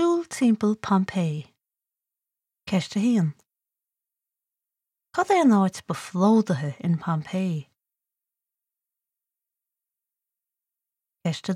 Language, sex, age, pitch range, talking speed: Slovak, female, 30-49, 175-235 Hz, 55 wpm